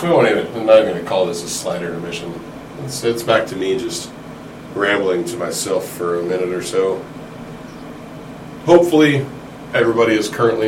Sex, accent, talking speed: male, American, 175 wpm